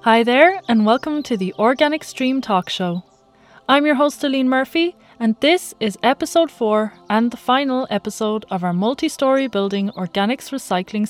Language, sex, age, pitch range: English, female, 20-39, 200-280 Hz